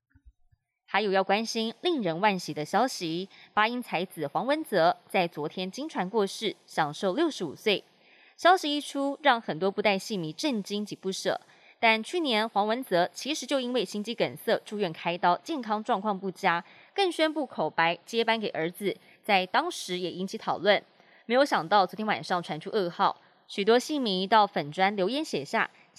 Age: 20-39